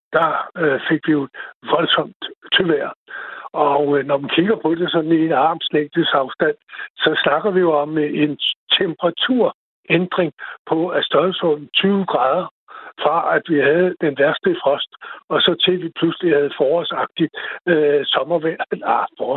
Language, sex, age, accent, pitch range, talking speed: Danish, male, 60-79, native, 160-210 Hz, 145 wpm